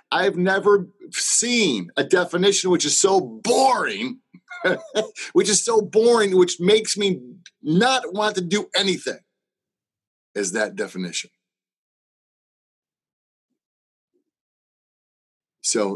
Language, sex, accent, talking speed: English, male, American, 100 wpm